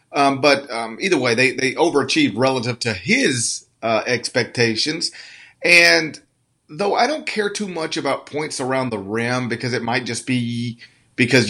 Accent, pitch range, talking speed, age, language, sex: American, 120-150 Hz, 160 wpm, 40-59, English, male